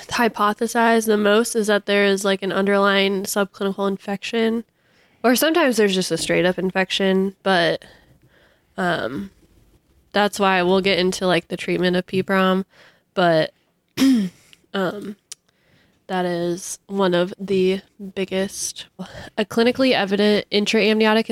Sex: female